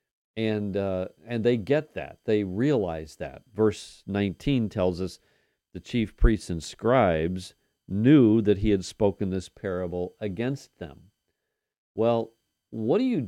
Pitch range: 90-115 Hz